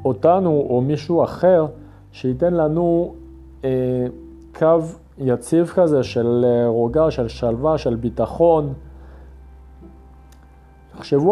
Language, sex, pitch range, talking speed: Hebrew, male, 105-150 Hz, 85 wpm